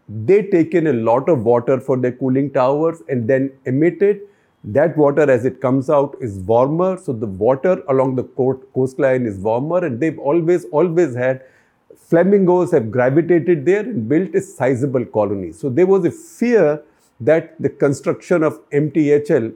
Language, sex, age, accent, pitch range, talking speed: English, male, 50-69, Indian, 125-155 Hz, 170 wpm